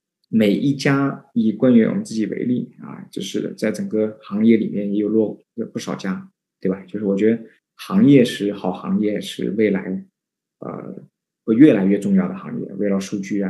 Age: 20-39